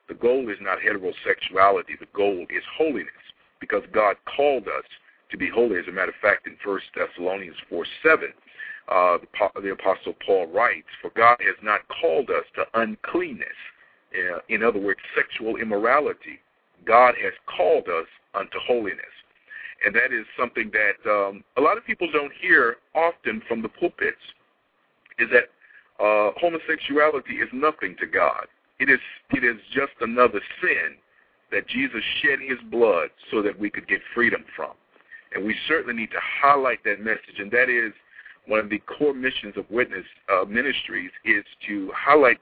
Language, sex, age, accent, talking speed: English, male, 50-69, American, 165 wpm